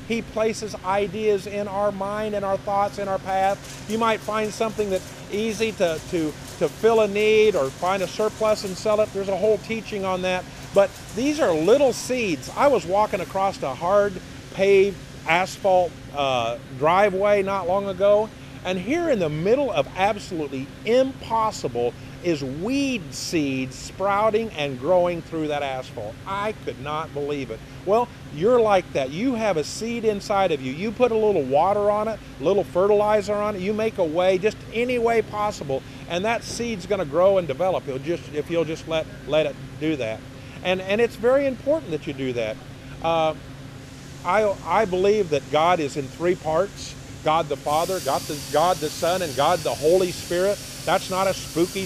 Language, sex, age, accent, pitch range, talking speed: English, male, 40-59, American, 150-210 Hz, 185 wpm